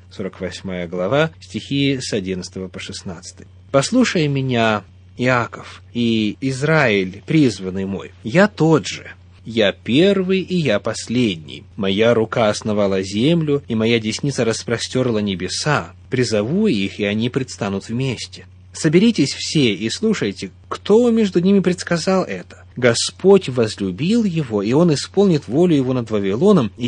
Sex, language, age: male, Russian, 30-49